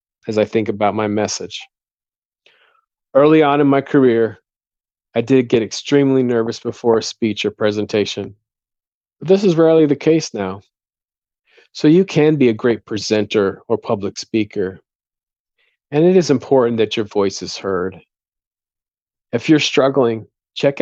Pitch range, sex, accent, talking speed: 105-135 Hz, male, American, 145 wpm